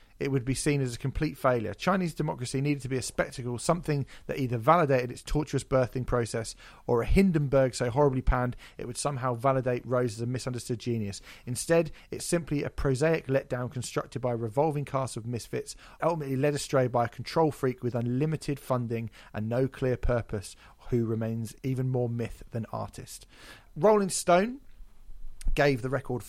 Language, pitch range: English, 120-145 Hz